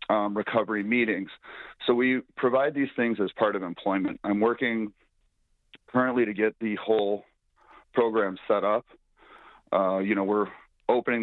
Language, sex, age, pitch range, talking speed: English, male, 40-59, 100-115 Hz, 145 wpm